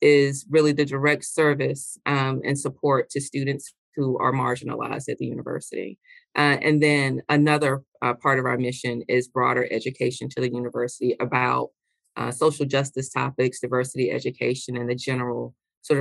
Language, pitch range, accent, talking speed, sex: English, 125-145 Hz, American, 155 wpm, female